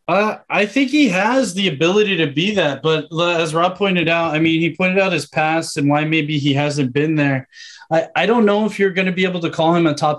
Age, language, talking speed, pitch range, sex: 20-39, English, 260 wpm, 145-175 Hz, male